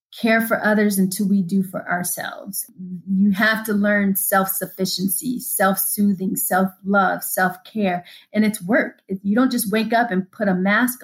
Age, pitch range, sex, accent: 30-49, 195-230 Hz, female, American